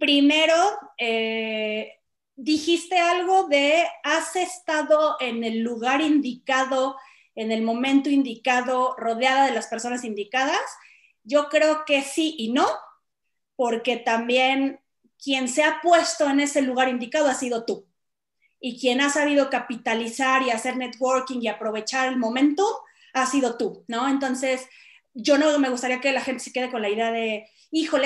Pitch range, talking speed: 235-295 Hz, 150 wpm